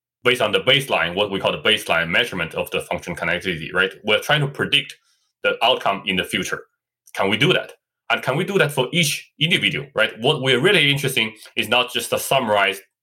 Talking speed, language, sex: 215 wpm, English, male